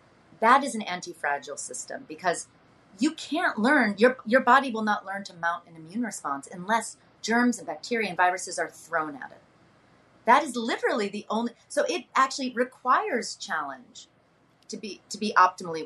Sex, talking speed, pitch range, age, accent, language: female, 170 wpm, 165-230 Hz, 30-49, American, English